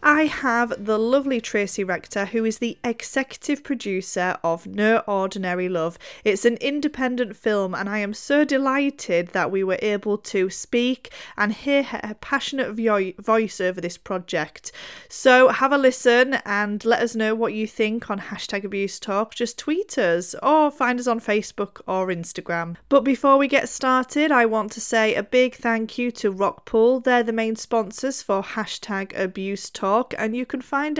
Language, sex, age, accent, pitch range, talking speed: English, female, 30-49, British, 200-255 Hz, 175 wpm